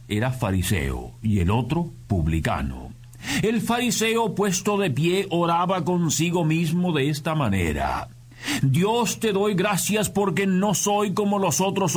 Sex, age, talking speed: male, 50-69, 135 wpm